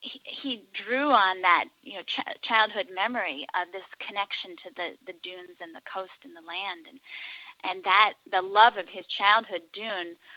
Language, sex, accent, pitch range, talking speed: English, female, American, 185-225 Hz, 185 wpm